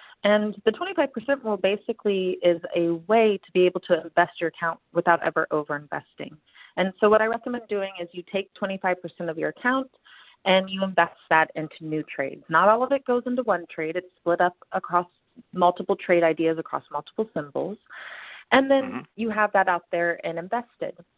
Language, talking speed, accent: English, 185 wpm, American